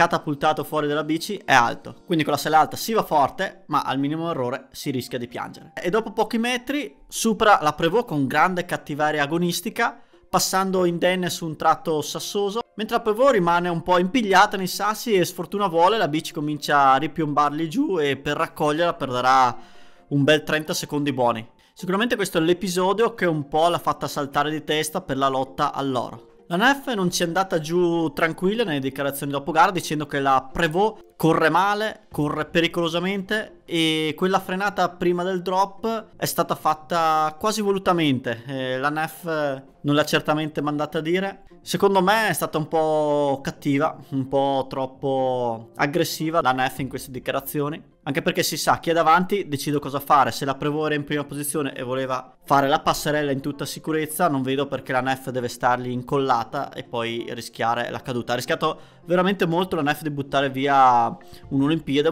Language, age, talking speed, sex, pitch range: Italian, 20-39, 180 wpm, male, 140-175 Hz